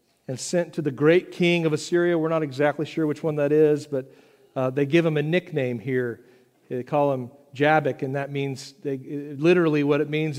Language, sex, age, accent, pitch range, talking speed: English, male, 50-69, American, 145-195 Hz, 215 wpm